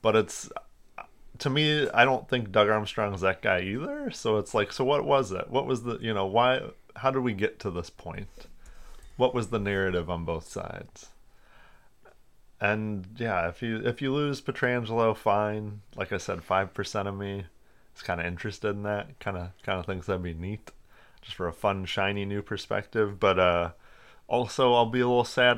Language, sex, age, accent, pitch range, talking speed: English, male, 30-49, American, 95-120 Hz, 195 wpm